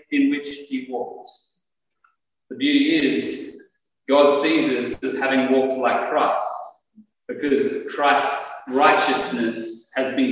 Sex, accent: male, Australian